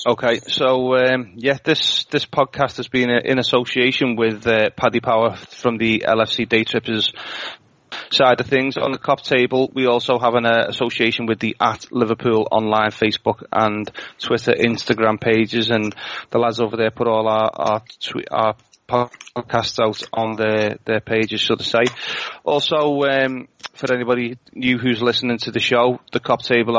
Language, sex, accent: English, male, British